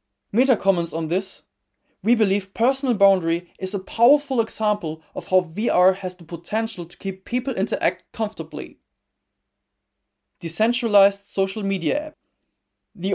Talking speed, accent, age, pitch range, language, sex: 130 wpm, German, 20-39, 165-215 Hz, English, male